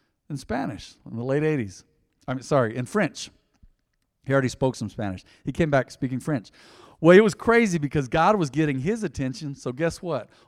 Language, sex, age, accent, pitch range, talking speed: English, male, 50-69, American, 125-155 Hz, 190 wpm